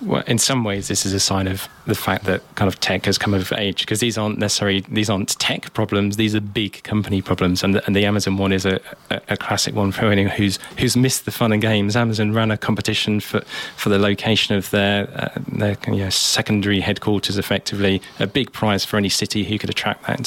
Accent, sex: British, male